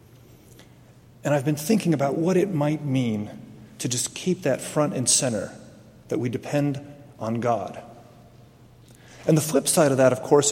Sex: male